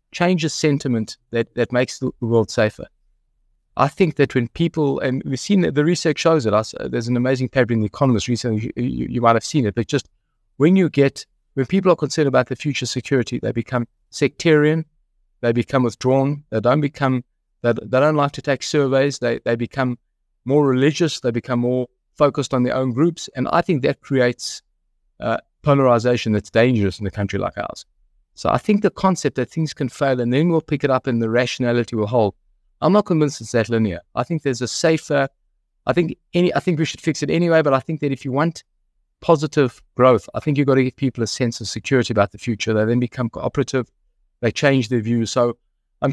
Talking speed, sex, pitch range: 215 wpm, male, 120-150 Hz